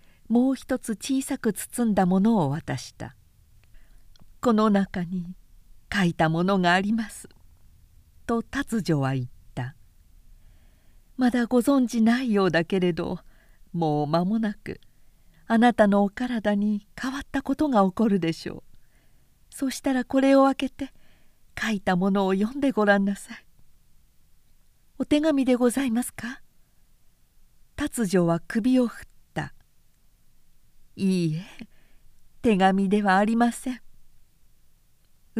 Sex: female